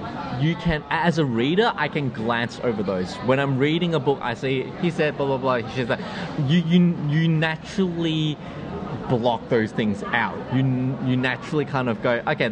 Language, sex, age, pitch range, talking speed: English, male, 20-39, 120-175 Hz, 190 wpm